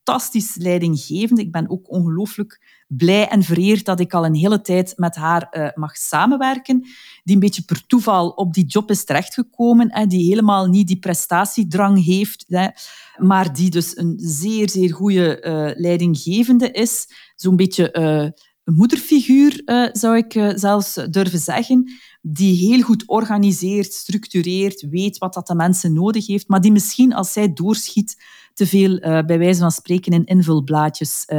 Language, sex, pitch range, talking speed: Dutch, female, 175-220 Hz, 160 wpm